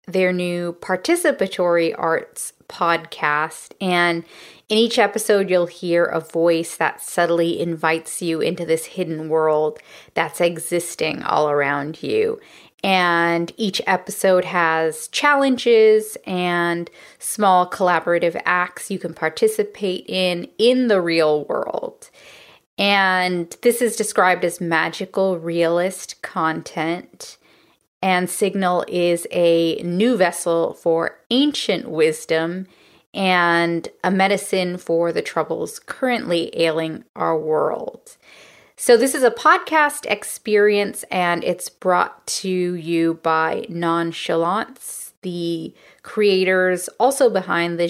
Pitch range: 170-200 Hz